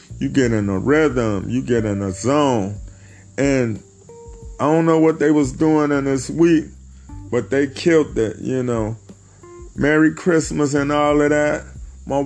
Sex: male